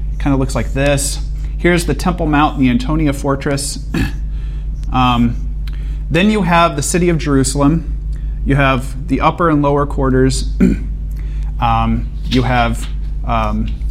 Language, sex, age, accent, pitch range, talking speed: English, male, 30-49, American, 120-150 Hz, 135 wpm